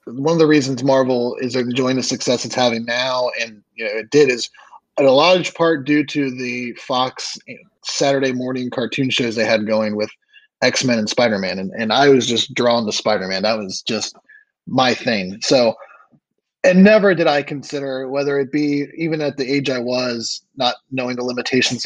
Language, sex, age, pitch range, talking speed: English, male, 20-39, 120-150 Hz, 185 wpm